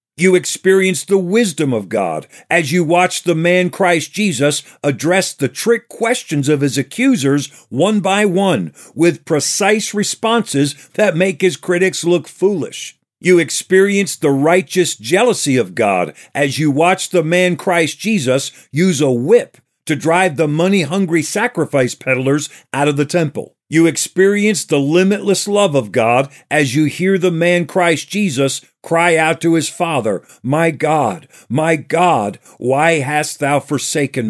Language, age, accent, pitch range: English, 50-69, American, 145-190 Hz